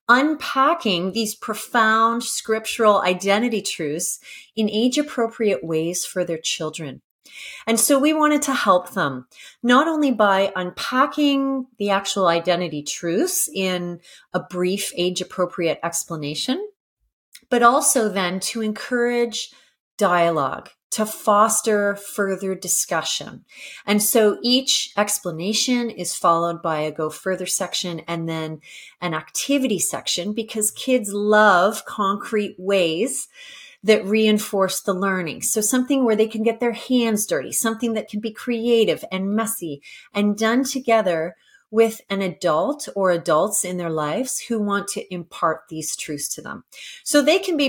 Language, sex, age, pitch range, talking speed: English, female, 30-49, 180-235 Hz, 135 wpm